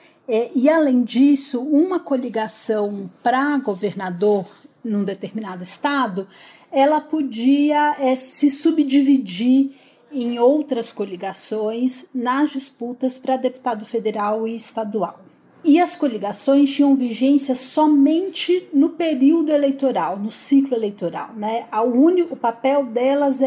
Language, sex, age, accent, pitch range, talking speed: Portuguese, female, 40-59, Brazilian, 220-285 Hz, 110 wpm